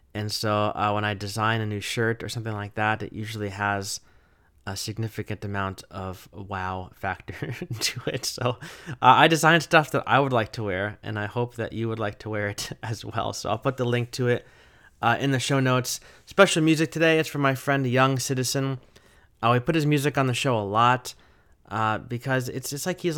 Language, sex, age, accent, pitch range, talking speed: English, male, 20-39, American, 105-130 Hz, 215 wpm